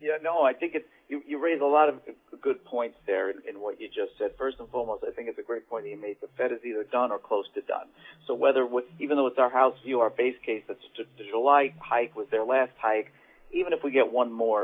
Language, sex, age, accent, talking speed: English, male, 50-69, American, 260 wpm